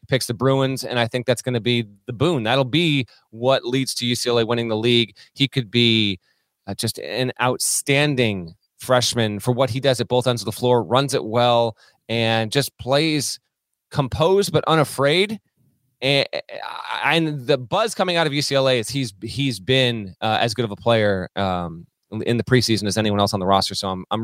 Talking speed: 195 wpm